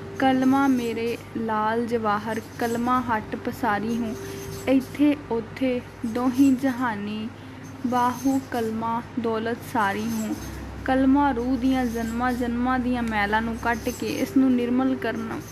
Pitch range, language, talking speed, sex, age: 225-260 Hz, Punjabi, 120 wpm, female, 10-29